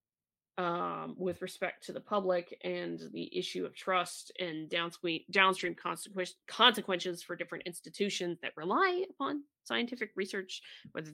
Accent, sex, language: American, female, English